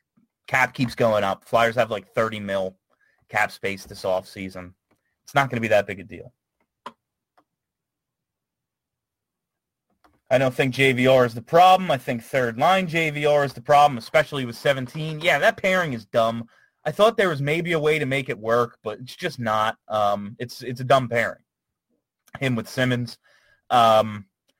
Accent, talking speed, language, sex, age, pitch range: American, 170 wpm, English, male, 30-49, 115-160 Hz